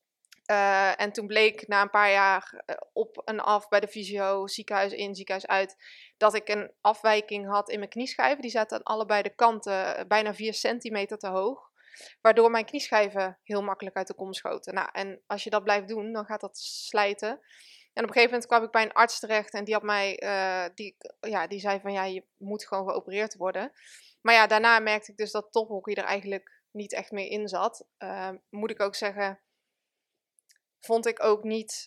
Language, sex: Dutch, female